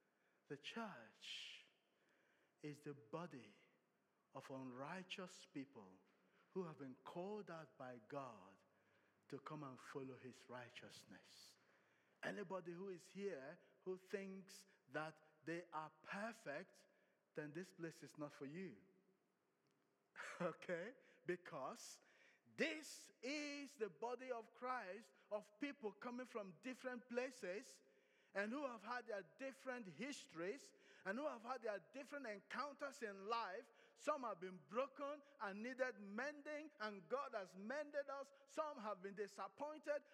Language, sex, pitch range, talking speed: English, male, 160-255 Hz, 125 wpm